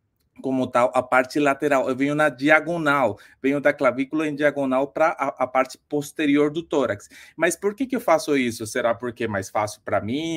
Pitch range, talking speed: 130-170 Hz, 205 wpm